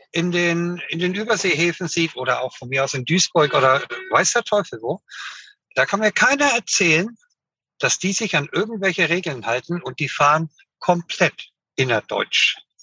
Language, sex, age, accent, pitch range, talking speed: German, male, 60-79, German, 155-210 Hz, 165 wpm